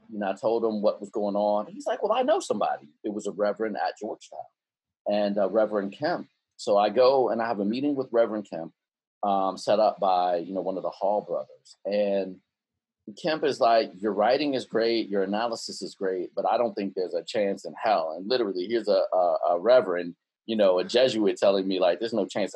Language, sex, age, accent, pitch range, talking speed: English, male, 40-59, American, 100-120 Hz, 225 wpm